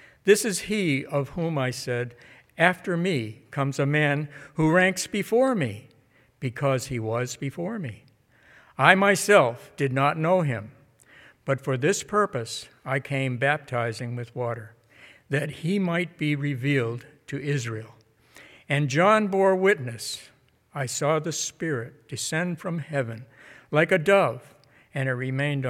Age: 60-79